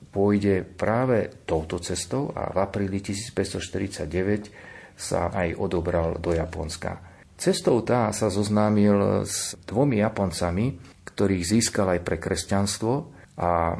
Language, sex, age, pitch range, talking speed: Slovak, male, 50-69, 90-105 Hz, 115 wpm